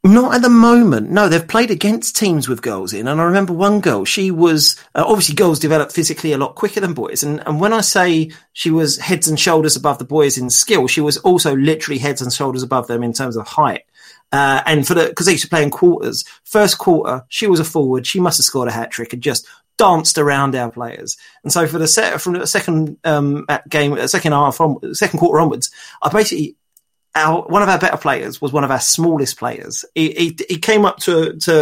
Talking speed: 235 wpm